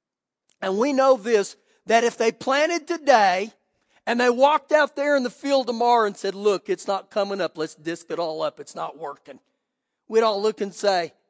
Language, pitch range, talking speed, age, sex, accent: English, 180-255 Hz, 200 wpm, 50-69, male, American